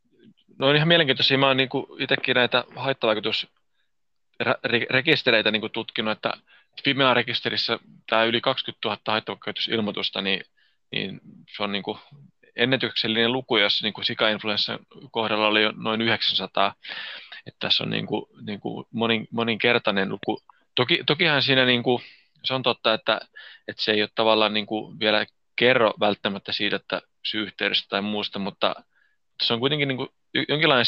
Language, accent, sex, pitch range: Finnish, native, male, 105-130 Hz